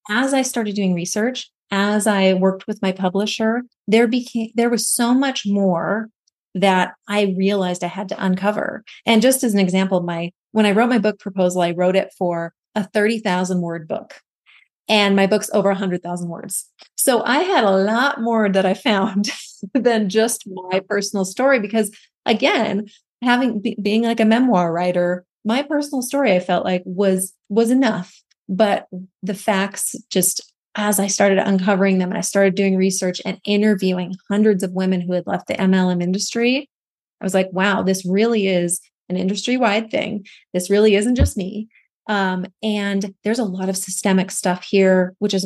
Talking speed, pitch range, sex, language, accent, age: 180 wpm, 190-220 Hz, female, English, American, 30-49